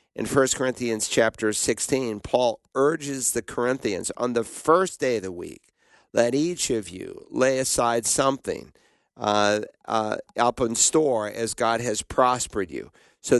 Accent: American